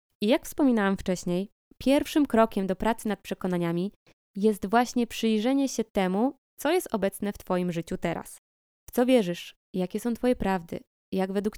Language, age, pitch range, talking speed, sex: Polish, 20-39, 190-240 Hz, 160 wpm, female